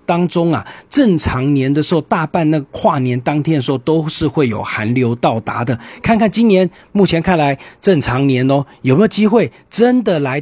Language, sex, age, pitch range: Chinese, male, 40-59, 135-190 Hz